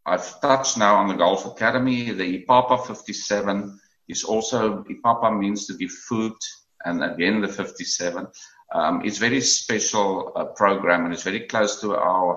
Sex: male